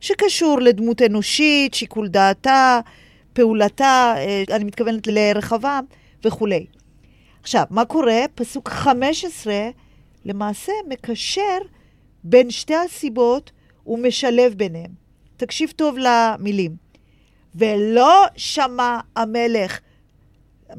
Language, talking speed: Hebrew, 85 wpm